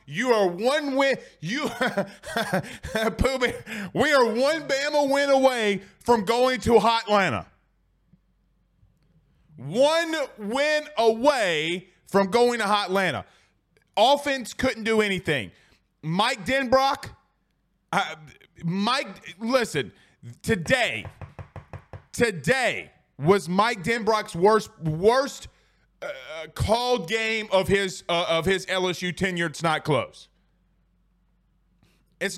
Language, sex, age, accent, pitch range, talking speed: English, male, 30-49, American, 185-245 Hz, 100 wpm